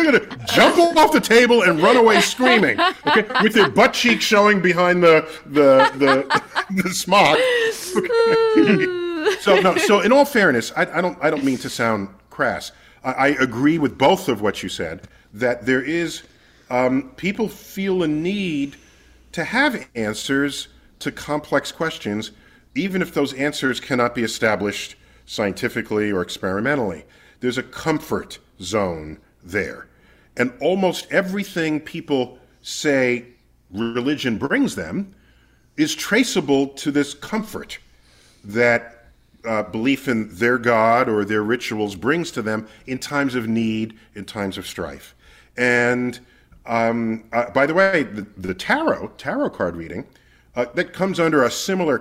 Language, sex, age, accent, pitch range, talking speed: English, male, 40-59, American, 115-190 Hz, 145 wpm